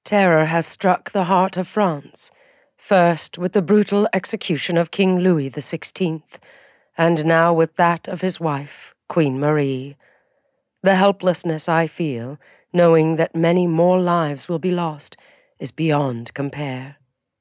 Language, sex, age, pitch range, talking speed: English, female, 40-59, 150-185 Hz, 140 wpm